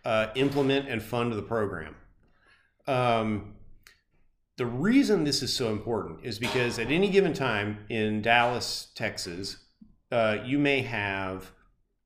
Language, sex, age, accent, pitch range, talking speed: English, male, 40-59, American, 105-130 Hz, 130 wpm